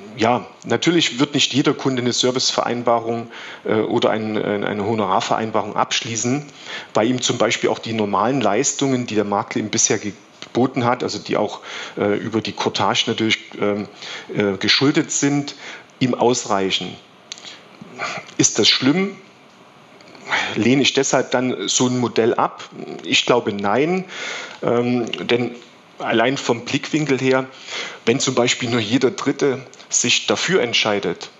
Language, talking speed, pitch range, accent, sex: German, 125 wpm, 110-130 Hz, German, male